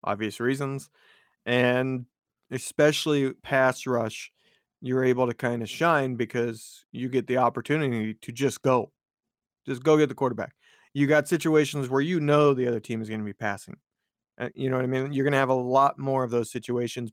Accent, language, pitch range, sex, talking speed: American, English, 120-140 Hz, male, 190 wpm